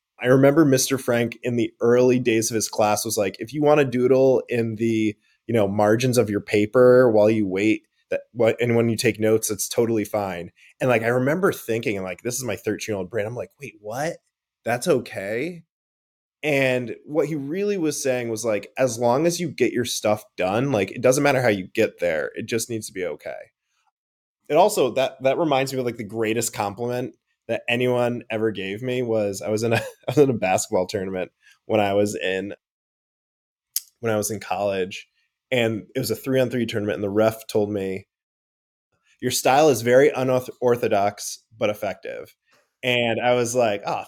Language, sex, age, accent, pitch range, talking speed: English, male, 20-39, American, 105-130 Hz, 205 wpm